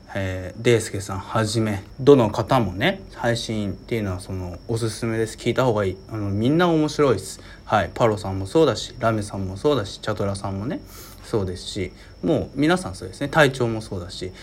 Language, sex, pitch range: Japanese, male, 100-130 Hz